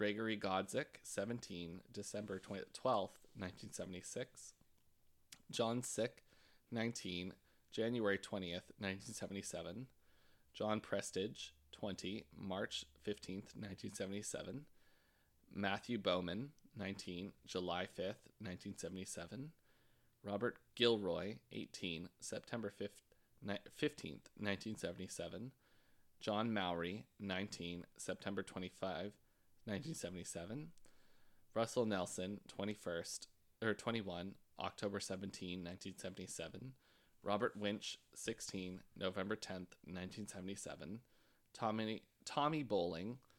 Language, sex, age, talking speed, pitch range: English, male, 20-39, 75 wpm, 95-110 Hz